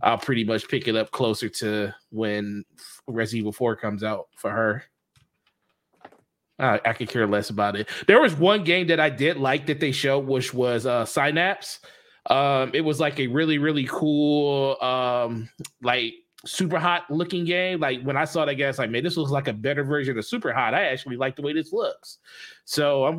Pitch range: 125-175 Hz